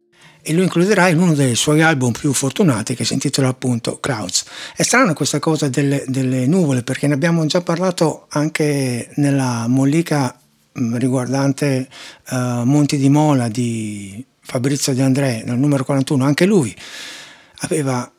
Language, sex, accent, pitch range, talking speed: Italian, male, native, 125-150 Hz, 150 wpm